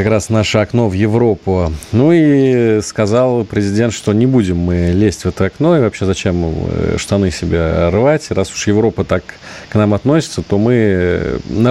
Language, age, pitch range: Russian, 40-59, 90-115 Hz